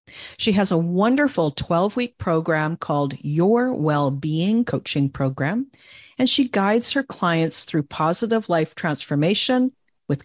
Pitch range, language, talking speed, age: 150-220 Hz, English, 125 wpm, 50-69